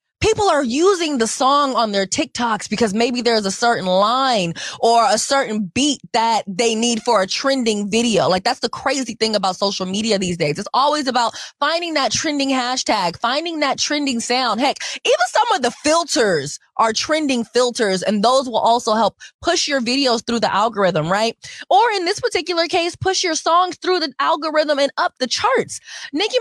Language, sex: English, female